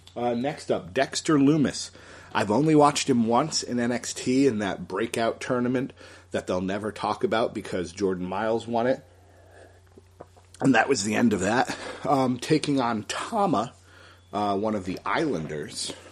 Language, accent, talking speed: English, American, 155 wpm